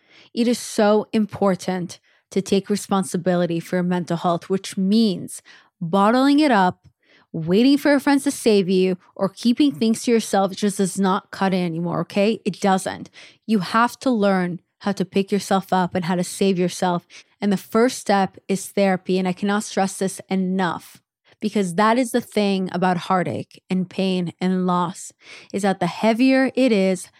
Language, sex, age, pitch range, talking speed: English, female, 20-39, 185-220 Hz, 175 wpm